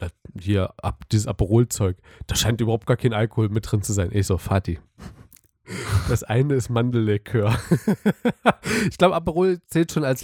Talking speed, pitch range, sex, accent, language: 160 wpm, 105-135 Hz, male, German, German